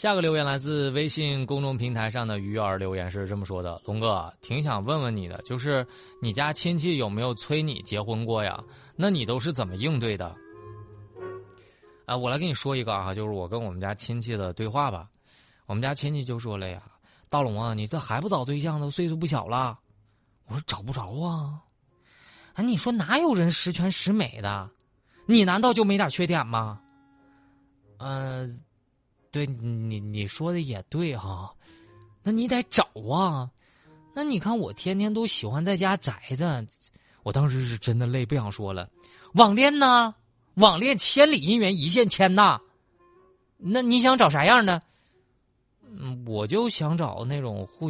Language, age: Chinese, 20-39